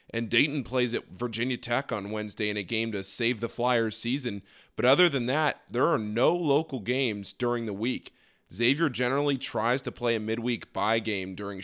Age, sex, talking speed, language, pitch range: 20-39, male, 195 wpm, English, 105-135 Hz